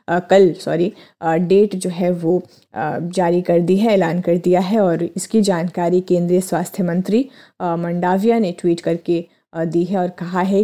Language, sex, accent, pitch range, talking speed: Hindi, female, native, 175-205 Hz, 175 wpm